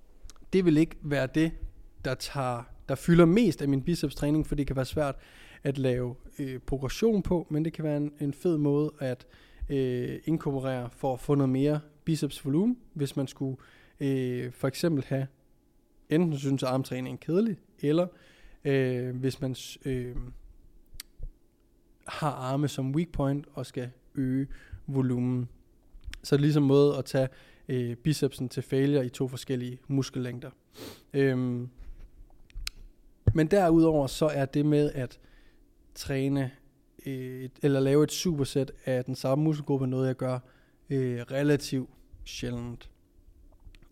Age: 20-39